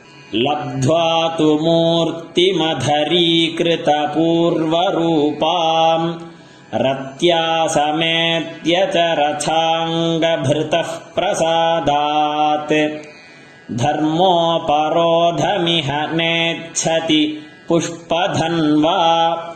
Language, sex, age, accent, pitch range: Tamil, male, 30-49, native, 150-170 Hz